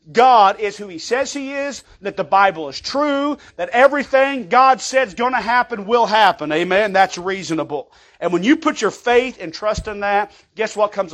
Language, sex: English, male